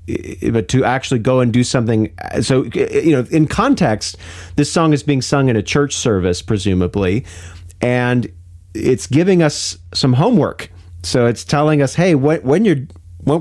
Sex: male